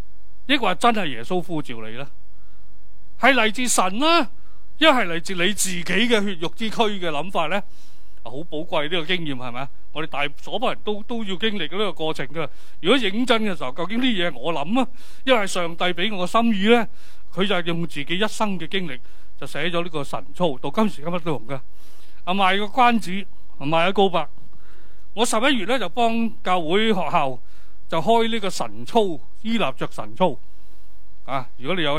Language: Chinese